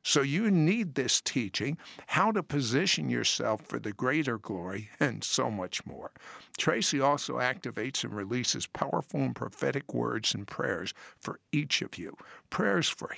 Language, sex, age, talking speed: English, male, 60-79, 155 wpm